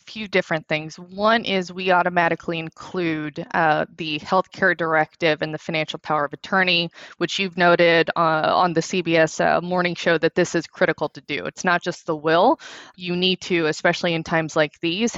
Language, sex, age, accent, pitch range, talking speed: English, female, 20-39, American, 160-180 Hz, 190 wpm